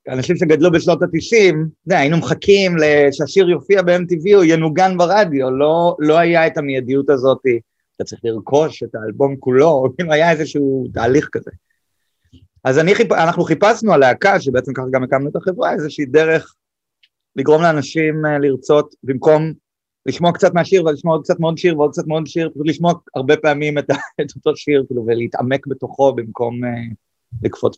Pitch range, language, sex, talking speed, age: 130-160 Hz, Hebrew, male, 145 wpm, 30-49